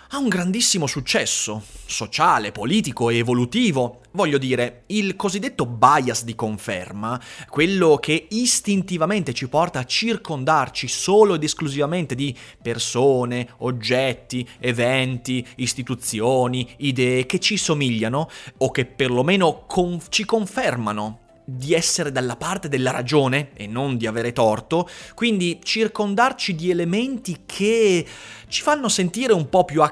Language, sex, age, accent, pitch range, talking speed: Italian, male, 30-49, native, 125-185 Hz, 125 wpm